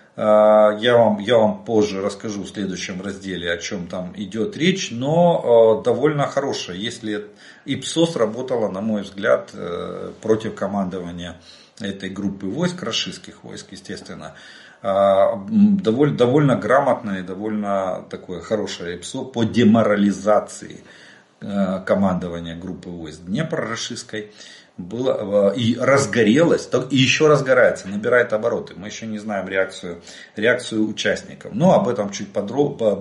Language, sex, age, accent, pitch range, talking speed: Russian, male, 40-59, native, 100-130 Hz, 115 wpm